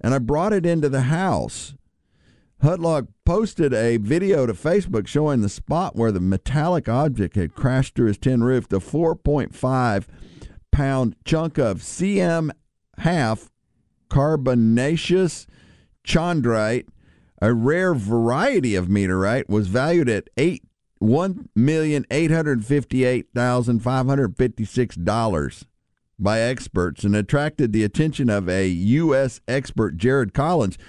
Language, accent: English, American